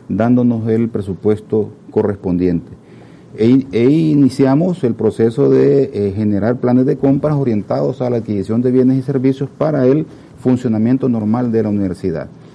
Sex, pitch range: male, 105-135 Hz